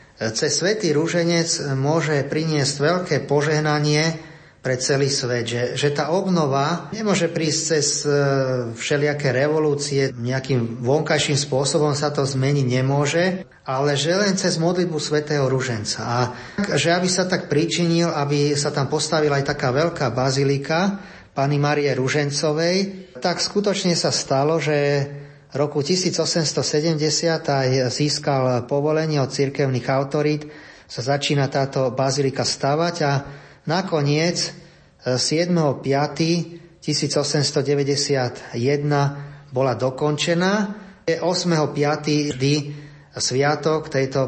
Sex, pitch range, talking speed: male, 135-160 Hz, 105 wpm